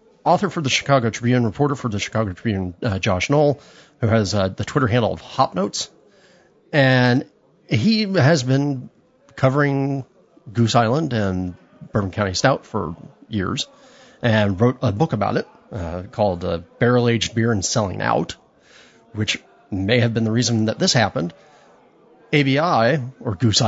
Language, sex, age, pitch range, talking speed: English, male, 30-49, 110-140 Hz, 150 wpm